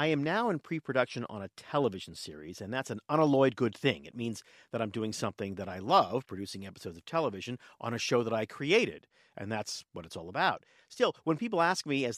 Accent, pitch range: American, 115-160 Hz